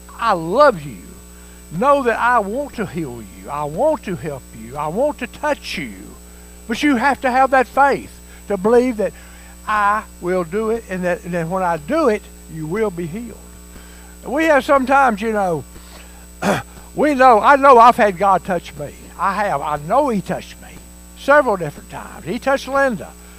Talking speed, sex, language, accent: 185 wpm, male, English, American